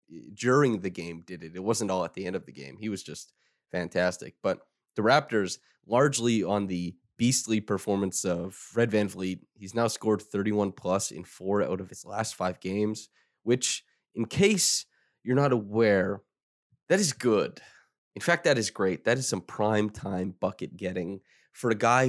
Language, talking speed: English, 180 wpm